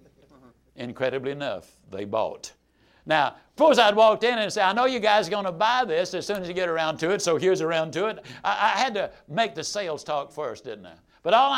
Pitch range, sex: 155-220 Hz, male